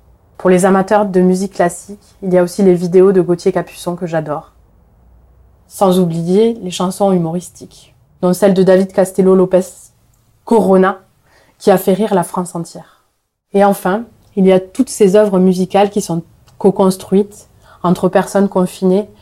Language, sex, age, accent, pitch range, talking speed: French, female, 20-39, French, 170-195 Hz, 155 wpm